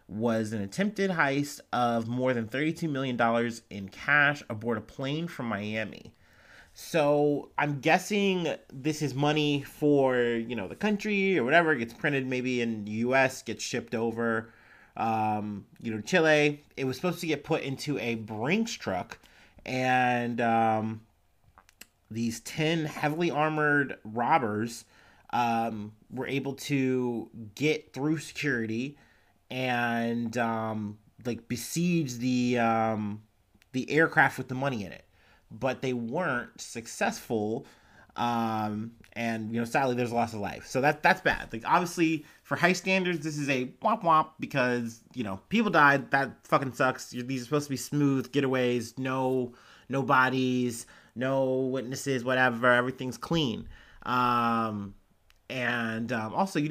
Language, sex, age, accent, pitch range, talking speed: English, male, 30-49, American, 115-145 Hz, 145 wpm